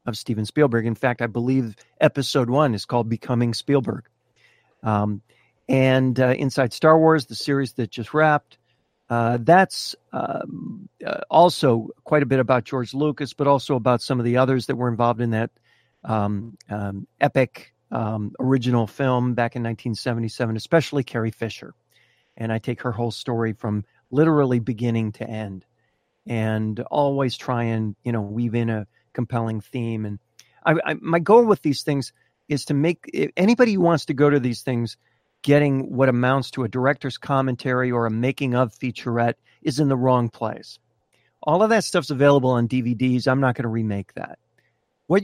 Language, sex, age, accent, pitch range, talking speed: English, male, 50-69, American, 115-140 Hz, 175 wpm